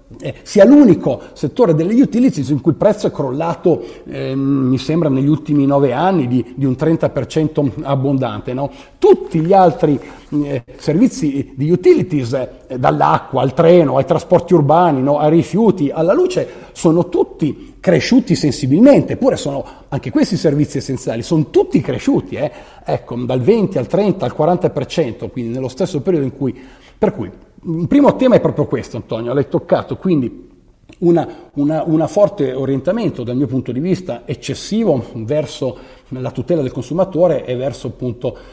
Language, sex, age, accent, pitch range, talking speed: Italian, male, 40-59, native, 130-170 Hz, 155 wpm